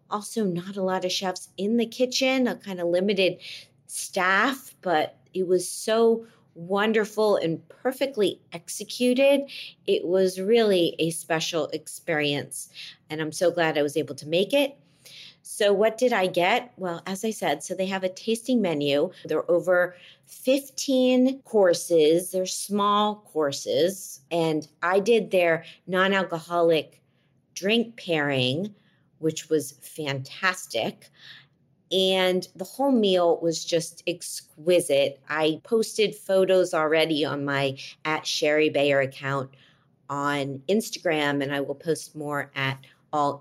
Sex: female